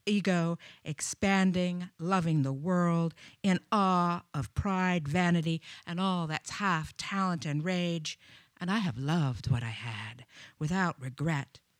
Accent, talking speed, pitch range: American, 130 wpm, 150-195 Hz